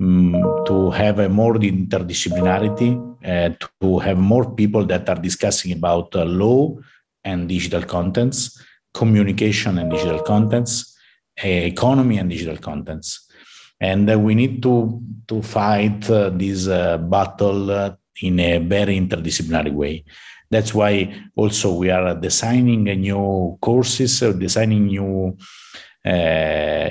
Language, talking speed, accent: Italian, 125 wpm, native